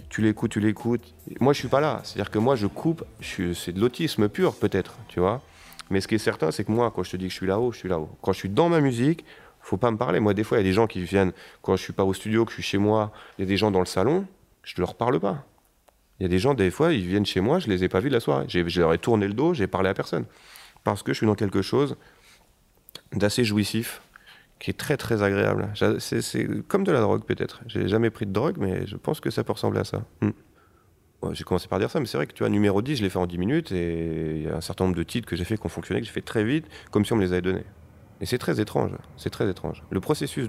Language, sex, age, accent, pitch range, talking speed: French, male, 30-49, French, 90-115 Hz, 315 wpm